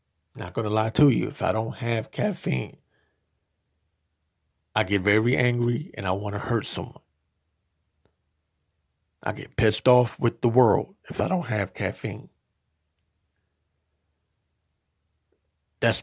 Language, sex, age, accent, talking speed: English, male, 50-69, American, 125 wpm